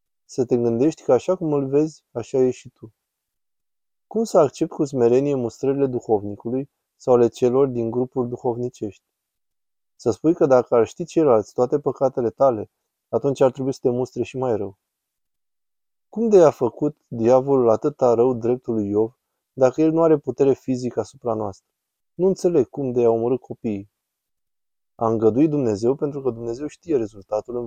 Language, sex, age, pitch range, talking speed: Romanian, male, 20-39, 115-140 Hz, 170 wpm